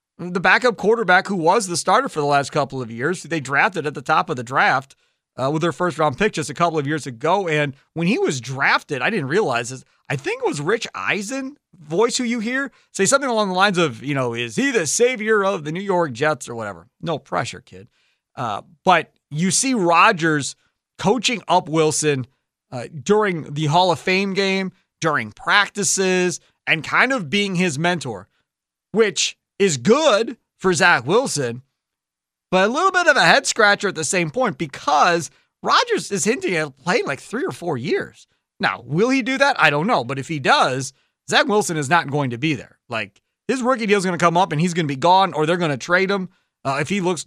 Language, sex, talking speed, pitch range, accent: English, male, 215 wpm, 150-195 Hz, American